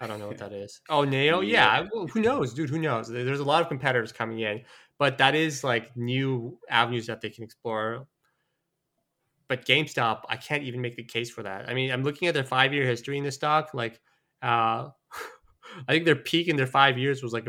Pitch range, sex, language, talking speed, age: 115-140 Hz, male, English, 220 wpm, 20-39